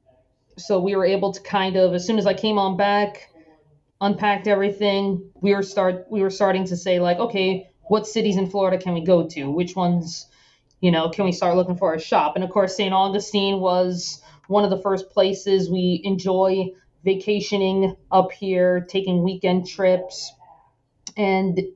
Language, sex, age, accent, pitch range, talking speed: English, female, 20-39, American, 185-220 Hz, 180 wpm